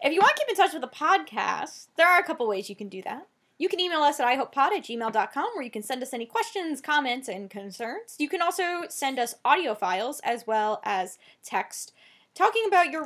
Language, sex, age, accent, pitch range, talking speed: English, female, 10-29, American, 215-295 Hz, 235 wpm